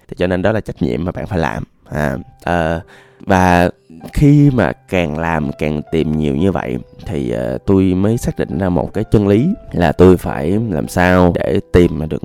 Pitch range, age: 75-95 Hz, 20-39